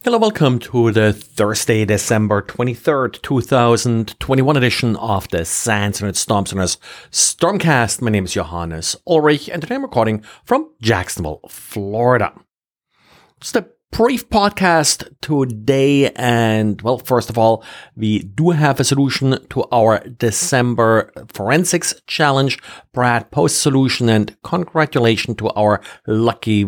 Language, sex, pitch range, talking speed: English, male, 105-145 Hz, 125 wpm